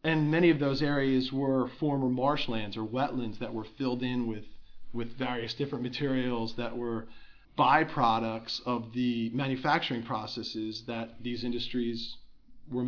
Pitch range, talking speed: 115-140 Hz, 140 wpm